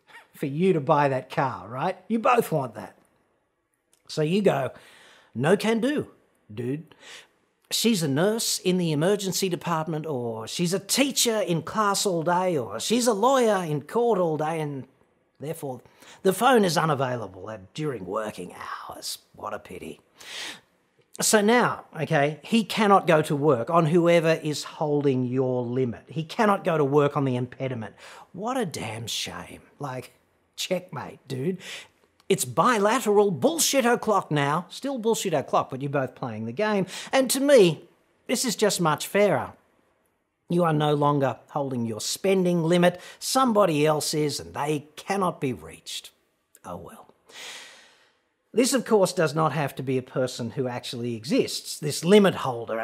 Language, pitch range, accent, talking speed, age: English, 140-205 Hz, Australian, 155 wpm, 40-59